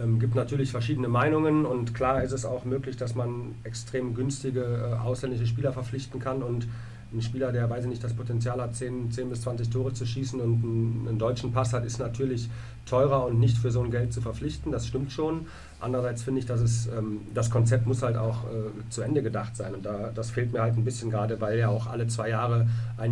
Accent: German